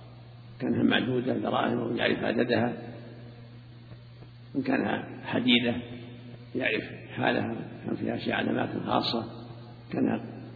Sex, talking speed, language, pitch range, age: male, 100 wpm, Arabic, 120-125 Hz, 50-69